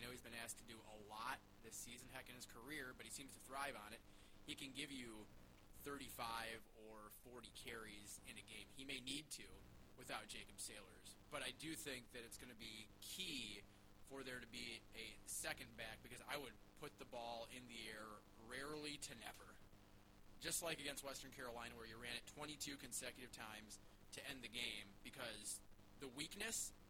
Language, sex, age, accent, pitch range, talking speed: English, male, 20-39, American, 100-135 Hz, 195 wpm